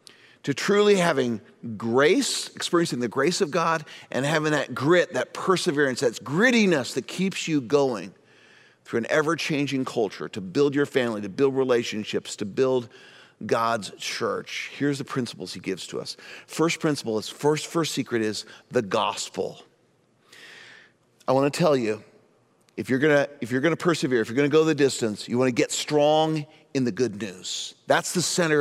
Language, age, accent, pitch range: English, 40-59, American, 120-165 Hz